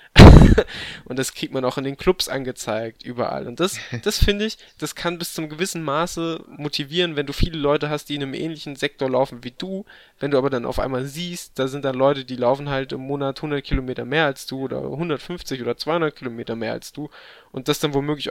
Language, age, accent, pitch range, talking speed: German, 10-29, German, 125-160 Hz, 225 wpm